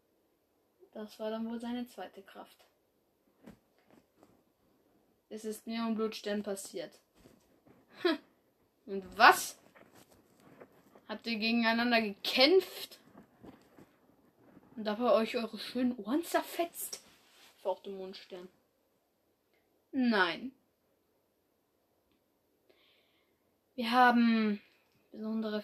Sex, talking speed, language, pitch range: female, 70 wpm, German, 200-245 Hz